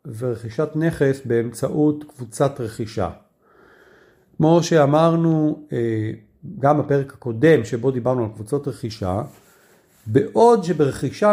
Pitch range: 135-205 Hz